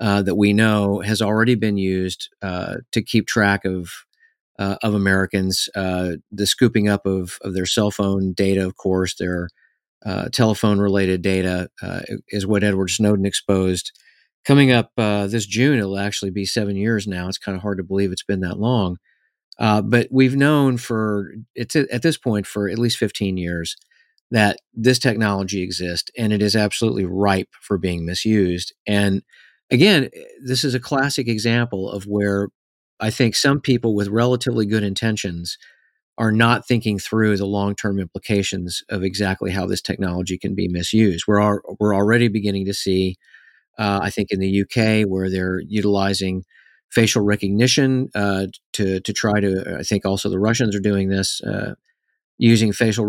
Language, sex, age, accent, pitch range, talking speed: English, male, 40-59, American, 95-110 Hz, 170 wpm